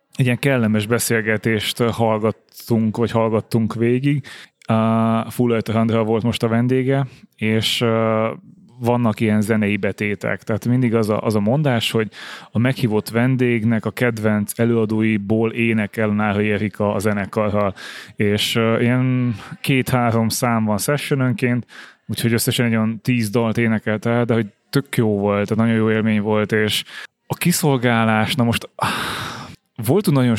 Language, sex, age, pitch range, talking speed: Hungarian, male, 20-39, 110-120 Hz, 140 wpm